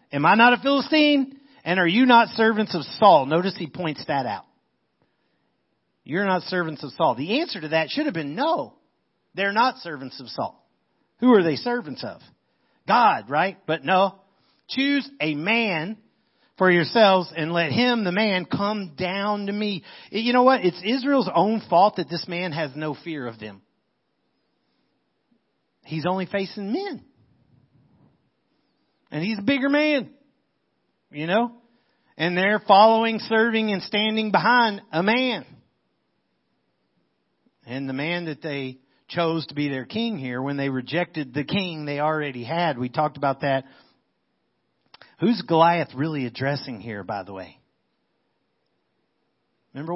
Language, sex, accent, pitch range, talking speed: English, male, American, 150-215 Hz, 150 wpm